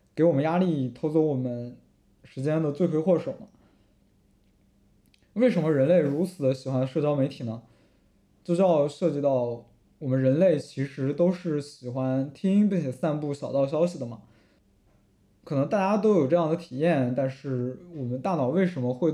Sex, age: male, 20-39